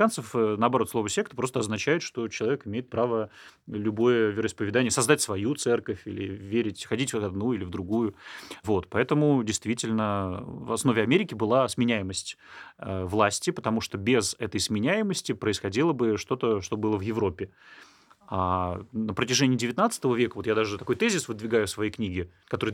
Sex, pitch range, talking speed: male, 105-130 Hz, 150 wpm